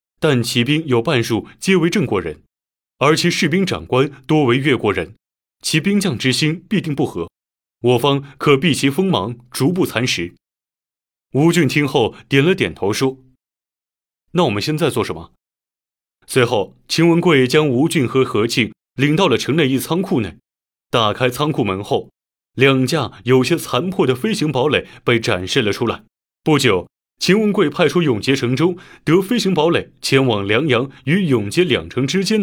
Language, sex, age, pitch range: Chinese, male, 30-49, 120-165 Hz